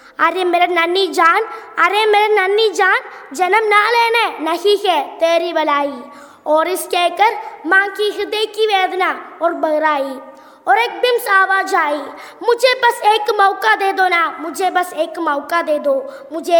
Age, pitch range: 20-39, 315-400 Hz